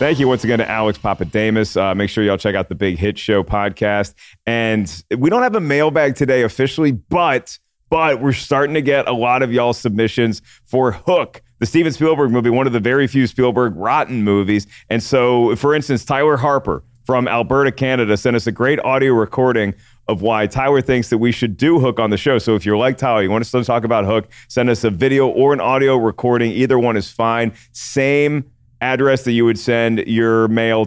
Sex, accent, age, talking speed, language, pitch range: male, American, 30-49, 210 wpm, English, 105-130 Hz